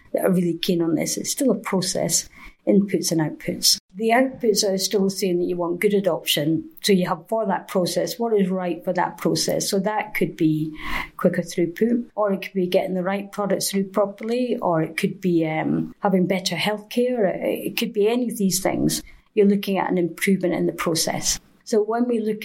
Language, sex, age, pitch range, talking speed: English, female, 50-69, 175-205 Hz, 210 wpm